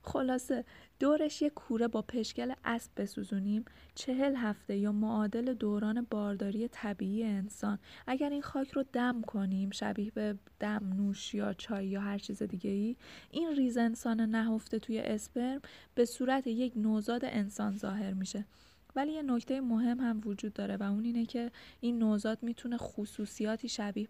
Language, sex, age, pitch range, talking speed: Persian, female, 20-39, 205-245 Hz, 155 wpm